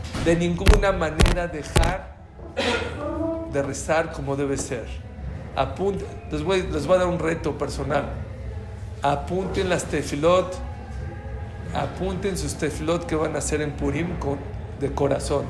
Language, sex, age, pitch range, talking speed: English, male, 50-69, 145-230 Hz, 130 wpm